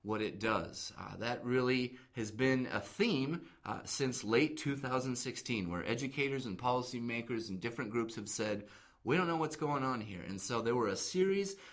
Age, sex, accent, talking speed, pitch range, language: 30-49, male, American, 185 wpm, 110-140 Hz, English